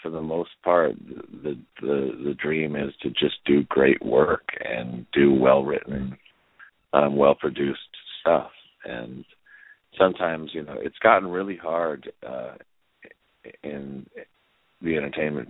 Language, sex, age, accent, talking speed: English, male, 50-69, American, 130 wpm